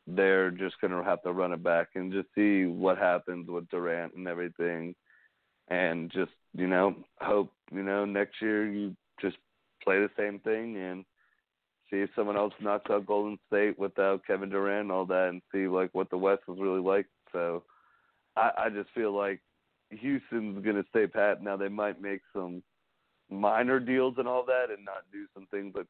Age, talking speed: 40-59, 195 wpm